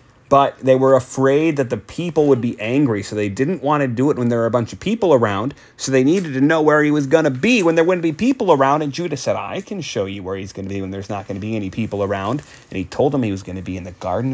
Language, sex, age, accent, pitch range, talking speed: English, male, 30-49, American, 100-130 Hz, 315 wpm